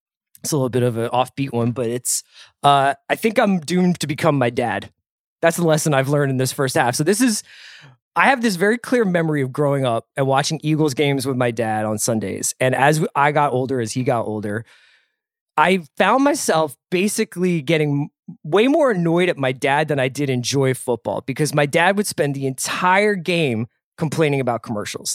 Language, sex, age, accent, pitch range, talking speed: English, male, 20-39, American, 130-175 Hz, 200 wpm